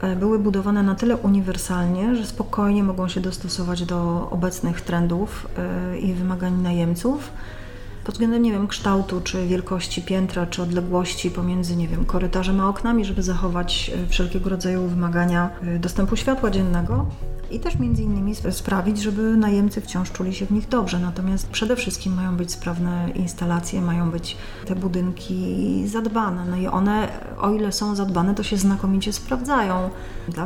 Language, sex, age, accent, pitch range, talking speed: Polish, female, 30-49, native, 175-200 Hz, 150 wpm